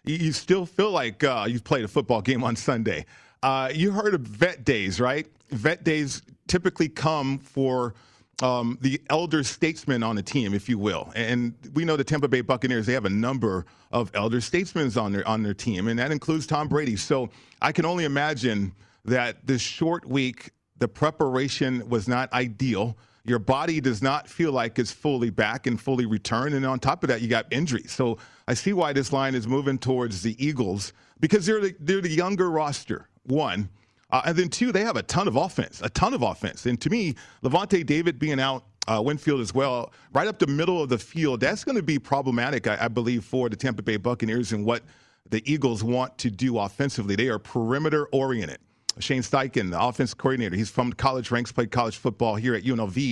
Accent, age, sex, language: American, 40-59, male, English